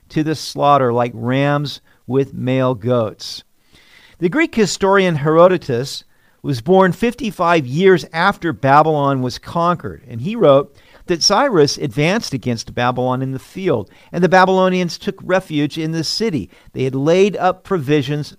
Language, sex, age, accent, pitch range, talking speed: English, male, 50-69, American, 130-190 Hz, 145 wpm